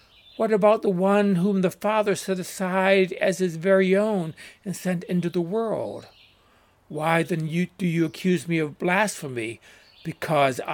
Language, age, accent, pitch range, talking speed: English, 60-79, American, 130-180 Hz, 150 wpm